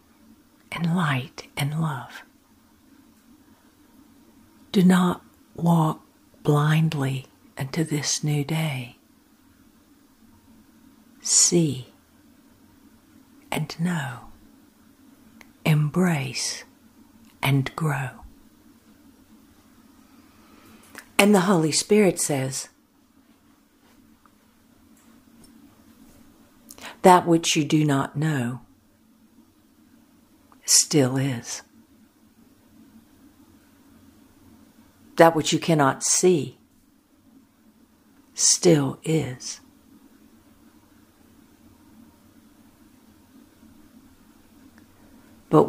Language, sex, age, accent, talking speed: English, female, 60-79, American, 50 wpm